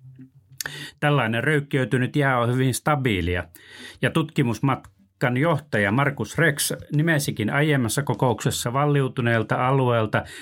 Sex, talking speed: male, 90 wpm